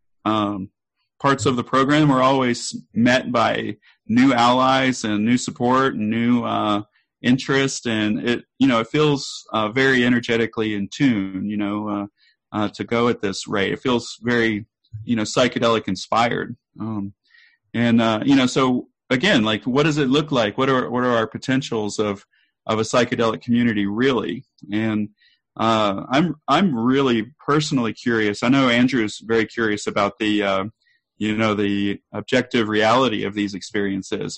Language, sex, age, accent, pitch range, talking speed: English, male, 30-49, American, 105-125 Hz, 160 wpm